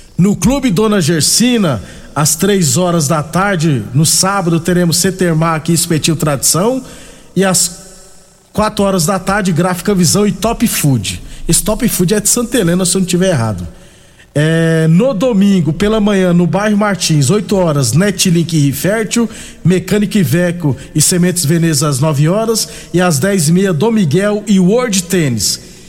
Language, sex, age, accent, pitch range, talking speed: Portuguese, male, 50-69, Brazilian, 160-205 Hz, 160 wpm